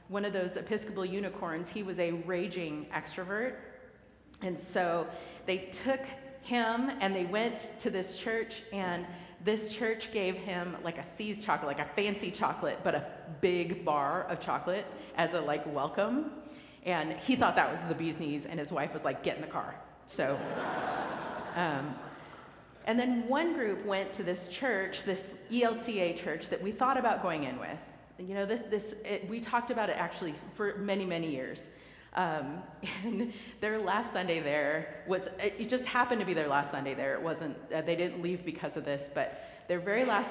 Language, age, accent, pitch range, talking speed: English, 40-59, American, 170-225 Hz, 185 wpm